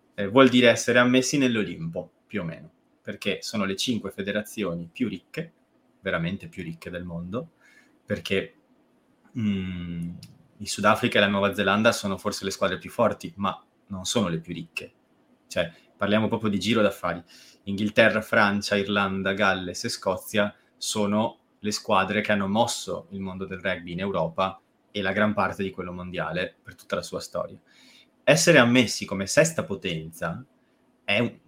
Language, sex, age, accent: Italian, male, 30-49, native